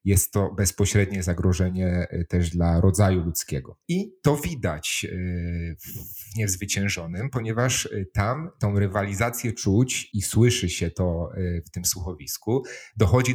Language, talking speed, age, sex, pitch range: Polish, 115 wpm, 40-59, male, 95-115 Hz